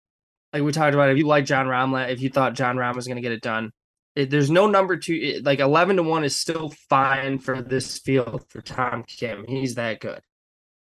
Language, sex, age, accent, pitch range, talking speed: English, male, 20-39, American, 115-140 Hz, 220 wpm